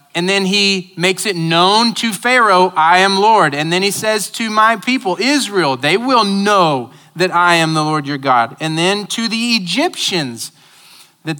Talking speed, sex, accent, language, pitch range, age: 185 wpm, male, American, English, 145-195 Hz, 30-49